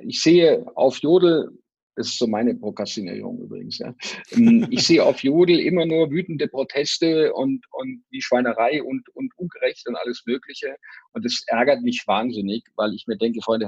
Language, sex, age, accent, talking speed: German, male, 50-69, German, 170 wpm